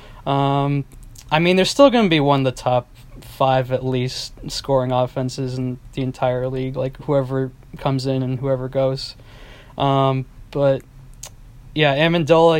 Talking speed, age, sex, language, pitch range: 150 wpm, 20-39, male, English, 125-140 Hz